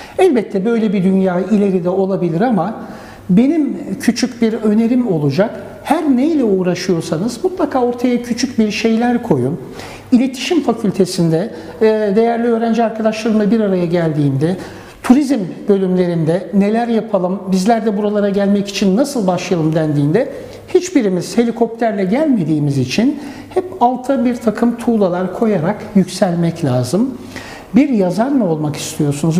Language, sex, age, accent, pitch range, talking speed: Turkish, male, 60-79, native, 190-250 Hz, 120 wpm